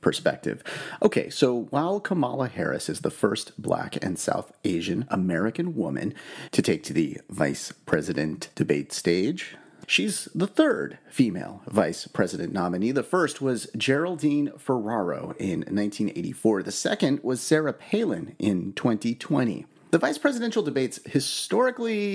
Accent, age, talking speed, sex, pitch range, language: American, 30-49, 135 wpm, male, 110-165 Hz, English